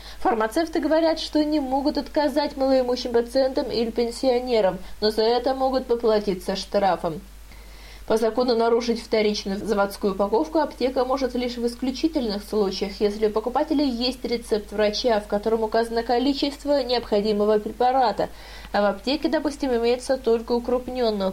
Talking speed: 130 wpm